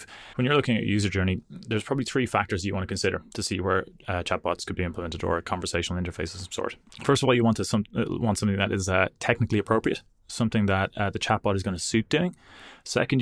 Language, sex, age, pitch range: English, male, 20-39, 95-110 Hz